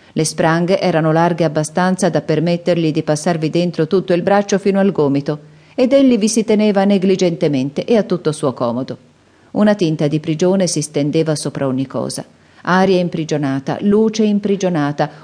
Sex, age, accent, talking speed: female, 40-59, native, 160 wpm